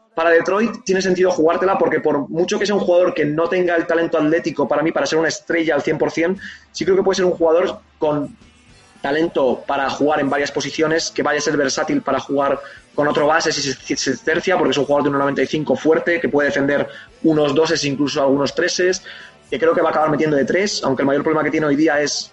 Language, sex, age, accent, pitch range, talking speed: Spanish, male, 20-39, Spanish, 145-165 Hz, 230 wpm